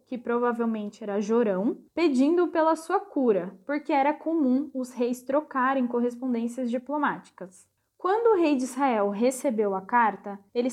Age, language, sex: 10-29, Portuguese, female